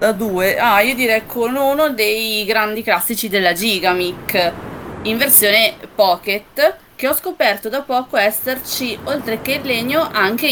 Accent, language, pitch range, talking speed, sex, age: native, Italian, 195-250 Hz, 145 wpm, female, 30-49